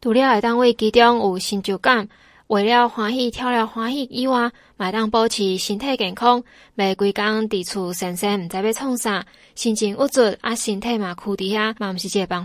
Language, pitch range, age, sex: Chinese, 200-235 Hz, 20-39, female